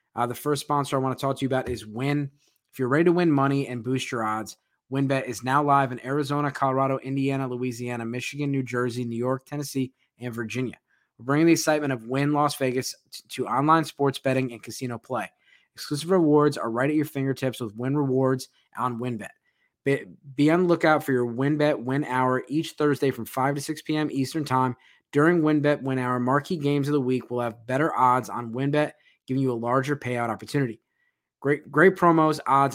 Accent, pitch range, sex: American, 125-145 Hz, male